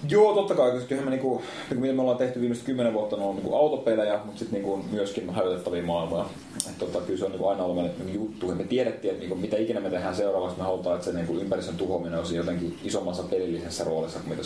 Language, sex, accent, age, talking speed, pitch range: Finnish, male, native, 30-49, 240 wpm, 85-105 Hz